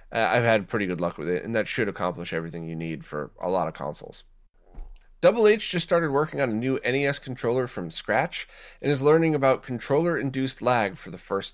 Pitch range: 100-135 Hz